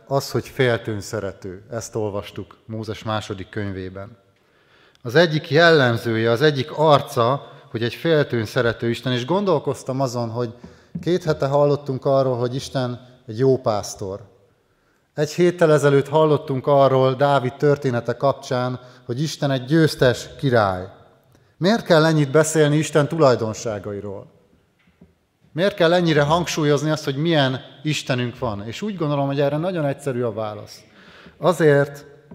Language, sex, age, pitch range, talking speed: Hungarian, male, 30-49, 120-155 Hz, 130 wpm